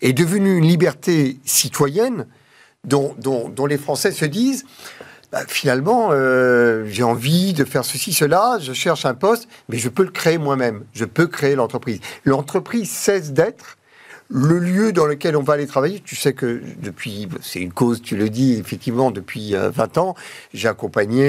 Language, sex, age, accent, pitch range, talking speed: French, male, 50-69, French, 115-170 Hz, 180 wpm